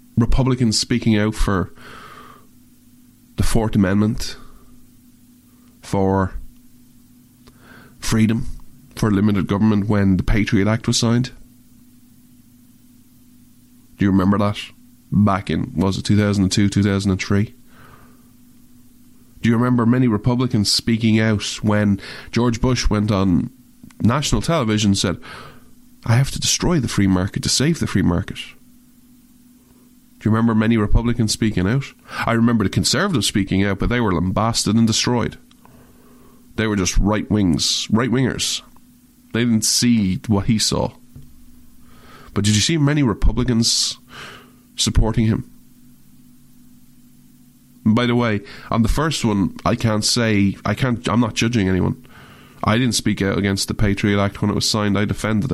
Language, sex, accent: English, male, Irish